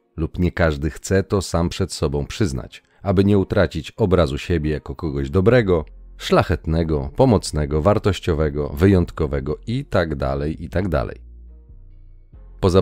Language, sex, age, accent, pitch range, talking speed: Polish, male, 40-59, native, 80-105 Hz, 110 wpm